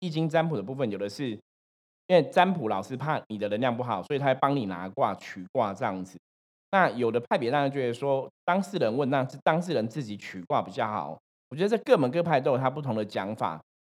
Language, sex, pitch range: Chinese, male, 105-145 Hz